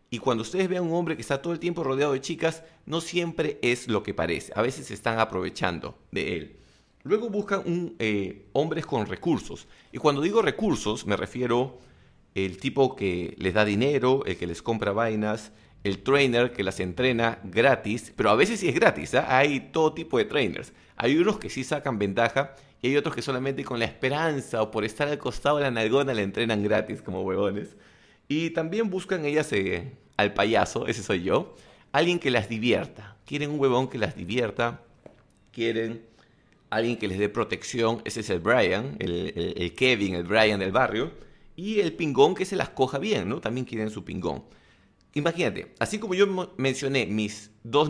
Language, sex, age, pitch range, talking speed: English, male, 30-49, 110-145 Hz, 195 wpm